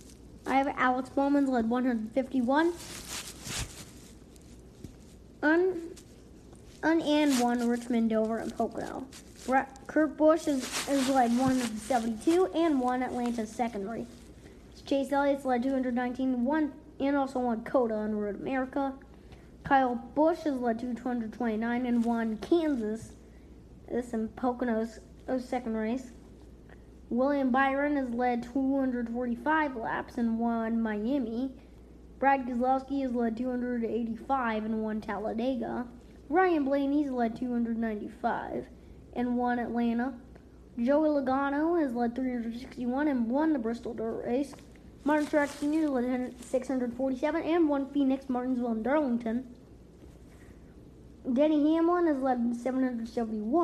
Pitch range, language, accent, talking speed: 235-280 Hz, English, American, 115 wpm